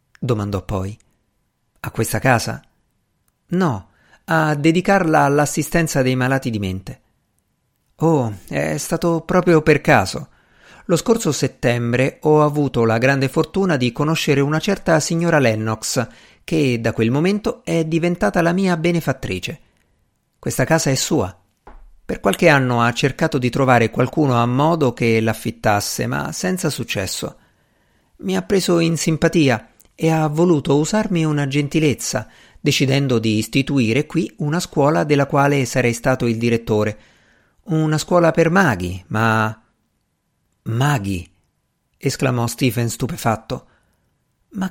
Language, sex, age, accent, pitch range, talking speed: Italian, male, 50-69, native, 115-160 Hz, 125 wpm